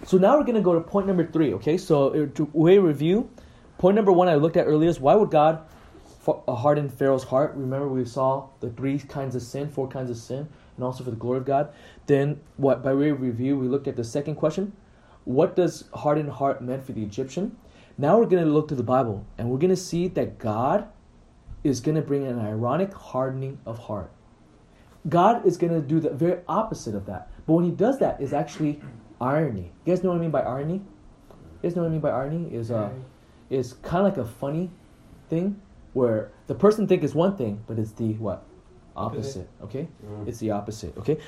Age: 20-39